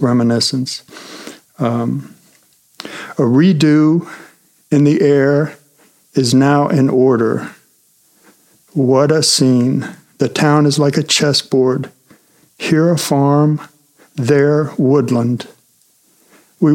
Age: 60-79